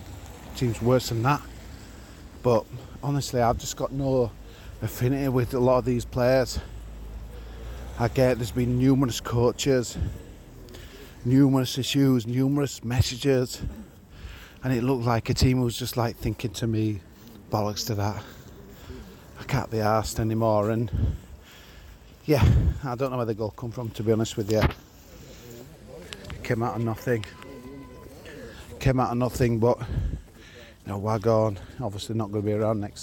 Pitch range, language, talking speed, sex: 105-125 Hz, English, 150 wpm, male